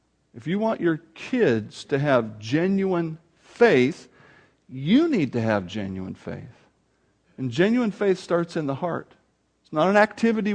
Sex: male